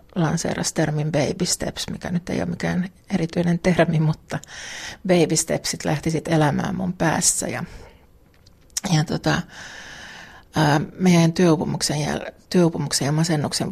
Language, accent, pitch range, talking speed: Finnish, native, 155-180 Hz, 115 wpm